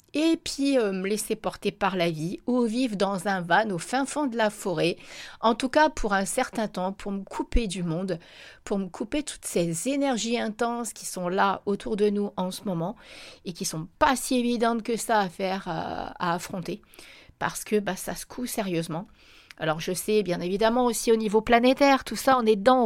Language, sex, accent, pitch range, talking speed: French, female, French, 180-230 Hz, 215 wpm